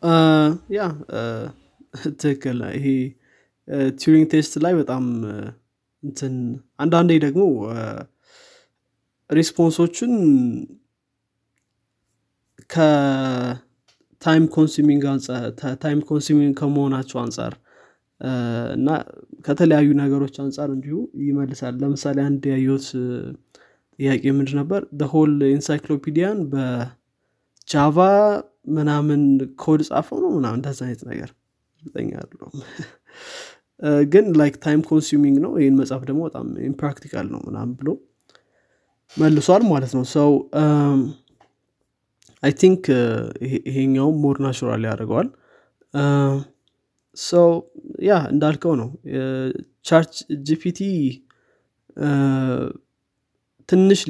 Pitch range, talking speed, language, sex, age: 130-155 Hz, 85 wpm, Amharic, male, 20-39